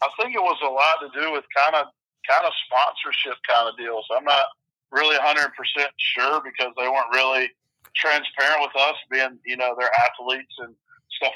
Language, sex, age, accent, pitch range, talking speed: English, male, 40-59, American, 125-145 Hz, 190 wpm